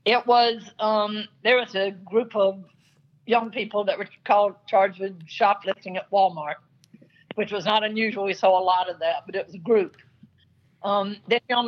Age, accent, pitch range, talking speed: 50-69, American, 185-225 Hz, 185 wpm